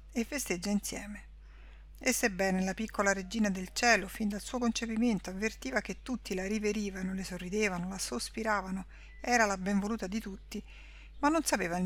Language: Italian